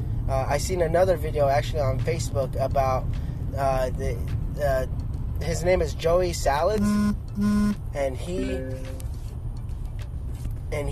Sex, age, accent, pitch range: male, 20-39, American, 115-135 Hz